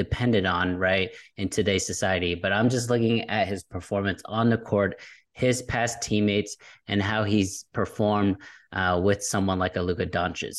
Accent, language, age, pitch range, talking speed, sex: American, English, 20-39, 95-110 Hz, 170 wpm, male